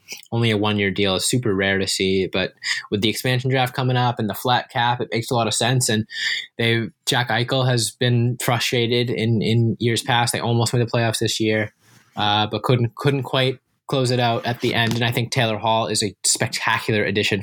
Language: English